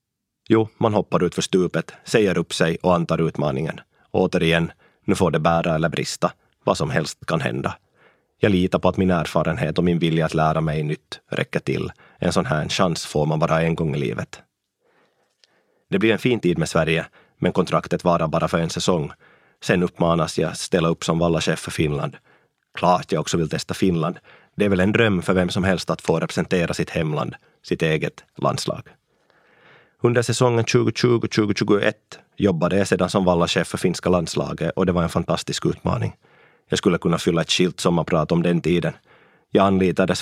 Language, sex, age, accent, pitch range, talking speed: Swedish, male, 30-49, Finnish, 85-105 Hz, 190 wpm